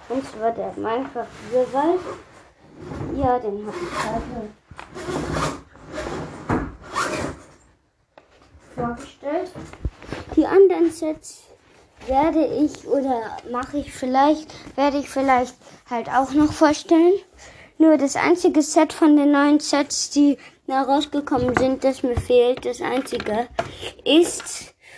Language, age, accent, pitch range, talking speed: German, 20-39, German, 235-305 Hz, 110 wpm